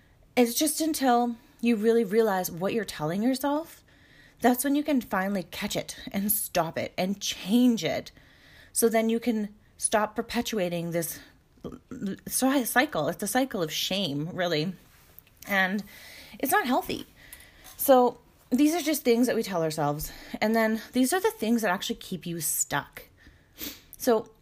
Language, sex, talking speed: English, female, 150 wpm